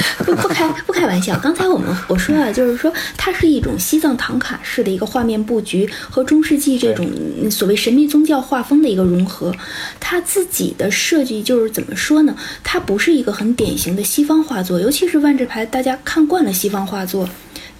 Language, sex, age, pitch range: Chinese, female, 20-39, 205-300 Hz